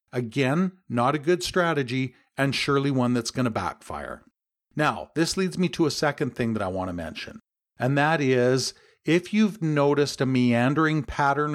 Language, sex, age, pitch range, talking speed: English, male, 50-69, 120-155 Hz, 175 wpm